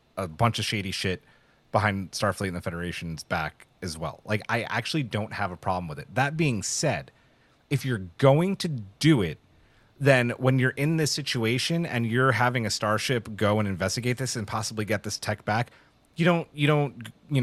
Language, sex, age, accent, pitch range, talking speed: English, male, 30-49, American, 95-125 Hz, 195 wpm